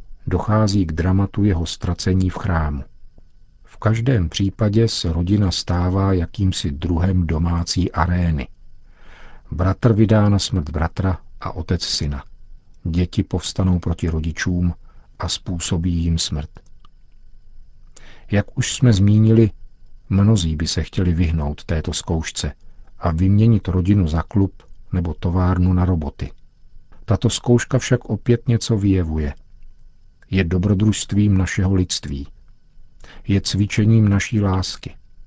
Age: 50-69